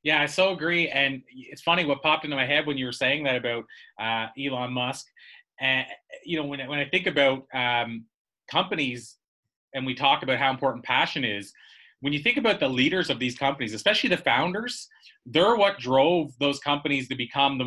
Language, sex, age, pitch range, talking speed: English, male, 30-49, 125-160 Hz, 205 wpm